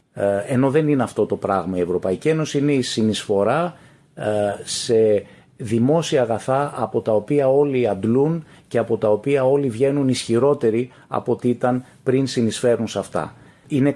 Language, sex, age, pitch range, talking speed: Greek, male, 30-49, 105-135 Hz, 150 wpm